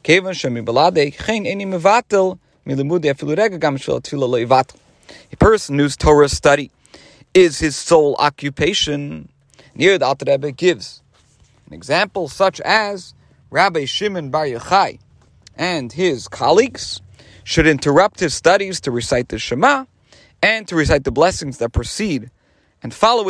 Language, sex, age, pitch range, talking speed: English, male, 40-59, 140-190 Hz, 105 wpm